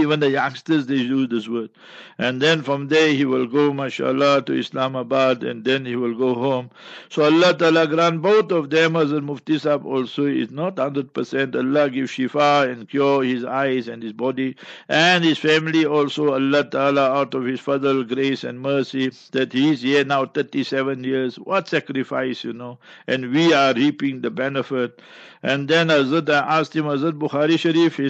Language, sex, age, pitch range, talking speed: English, male, 60-79, 130-155 Hz, 185 wpm